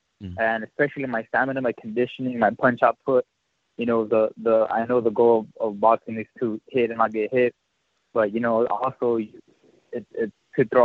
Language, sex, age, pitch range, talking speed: English, male, 20-39, 110-125 Hz, 200 wpm